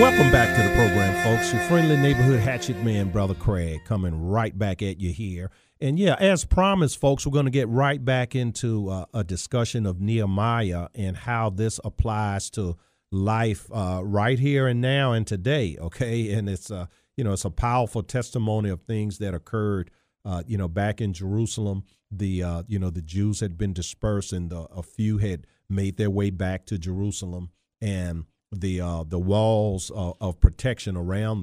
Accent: American